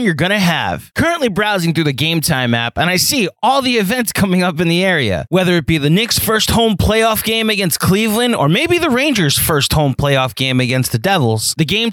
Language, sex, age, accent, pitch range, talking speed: English, male, 20-39, American, 145-220 Hz, 225 wpm